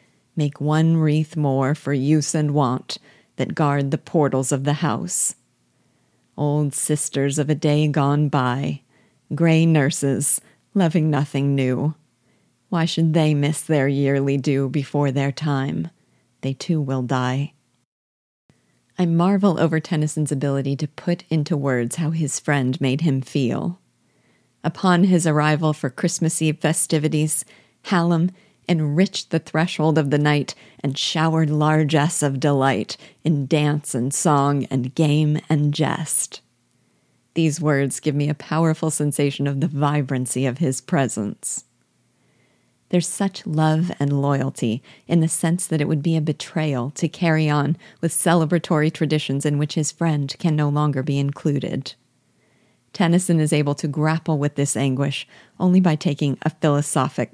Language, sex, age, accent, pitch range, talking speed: English, female, 40-59, American, 140-160 Hz, 145 wpm